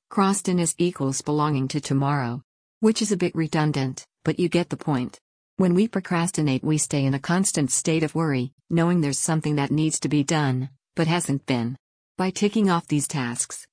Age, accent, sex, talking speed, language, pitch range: 50-69, American, female, 190 wpm, English, 140-170 Hz